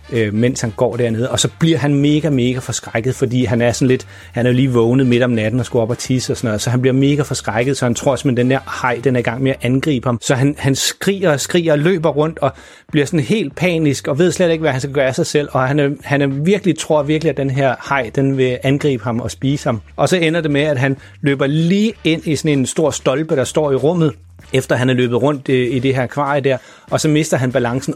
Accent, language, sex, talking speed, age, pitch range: native, Danish, male, 275 wpm, 30-49, 120-145 Hz